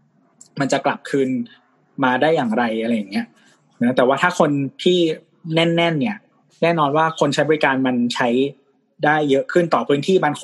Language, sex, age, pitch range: Thai, male, 20-39, 135-180 Hz